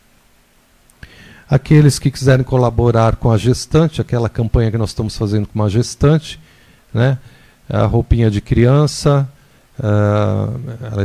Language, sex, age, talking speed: Portuguese, male, 50-69, 125 wpm